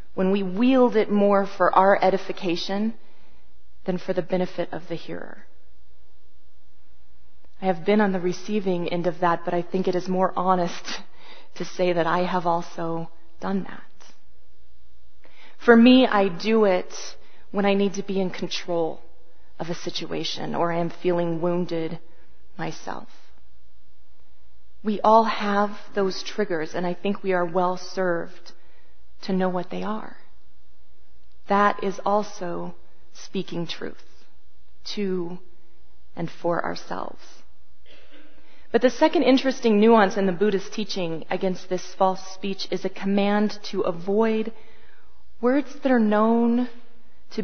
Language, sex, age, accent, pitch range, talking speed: English, female, 30-49, American, 165-205 Hz, 135 wpm